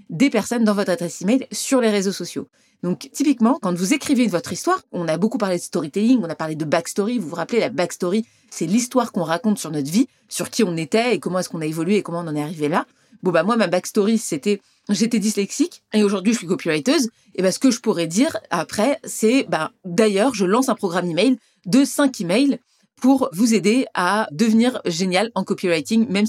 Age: 30-49